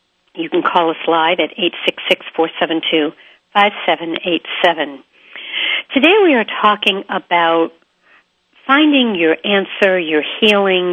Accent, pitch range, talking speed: American, 160-210 Hz, 95 wpm